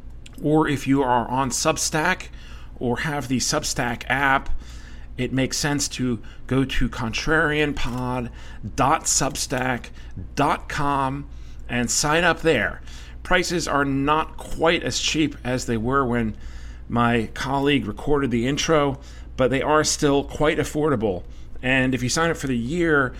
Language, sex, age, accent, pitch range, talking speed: English, male, 40-59, American, 115-150 Hz, 130 wpm